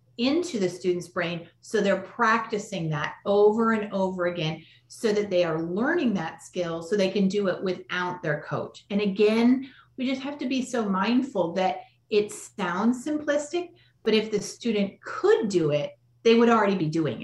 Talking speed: 180 wpm